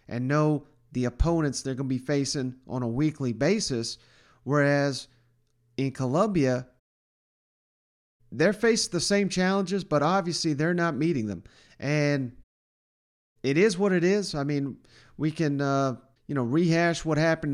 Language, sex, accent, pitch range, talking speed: English, male, American, 130-160 Hz, 145 wpm